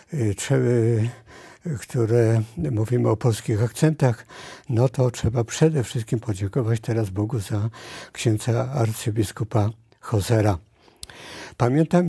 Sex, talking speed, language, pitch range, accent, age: male, 90 wpm, Polish, 110-135 Hz, native, 60-79